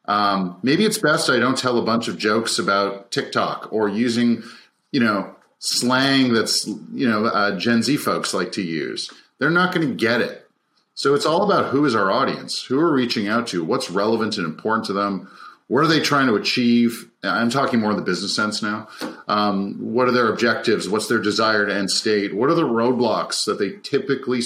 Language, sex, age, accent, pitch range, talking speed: English, male, 40-59, American, 105-135 Hz, 205 wpm